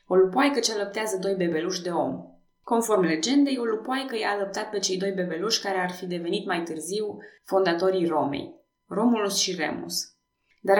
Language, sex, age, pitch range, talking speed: Romanian, female, 20-39, 175-215 Hz, 165 wpm